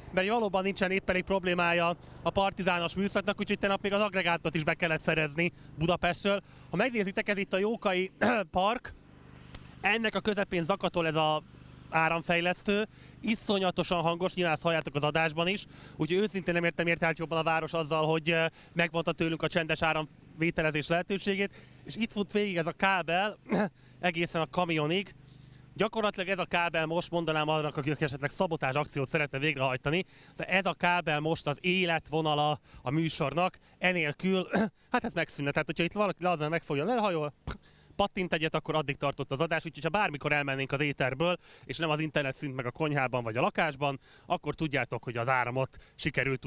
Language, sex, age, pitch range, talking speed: Hungarian, male, 20-39, 145-180 Hz, 170 wpm